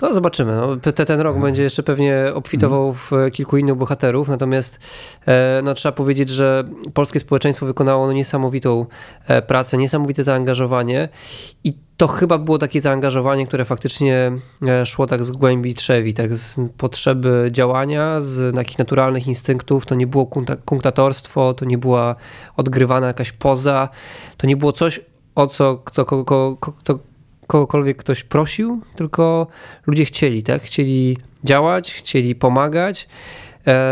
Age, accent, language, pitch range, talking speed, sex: 20-39, native, Polish, 130-145 Hz, 130 wpm, male